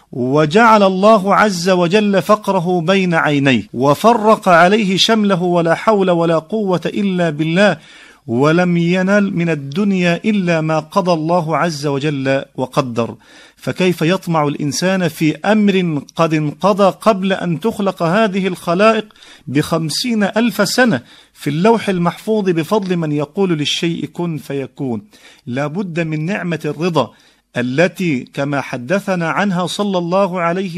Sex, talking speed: male, 125 wpm